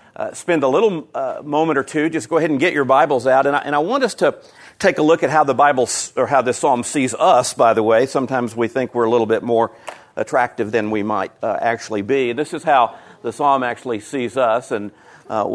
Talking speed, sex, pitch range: 245 wpm, male, 115-145 Hz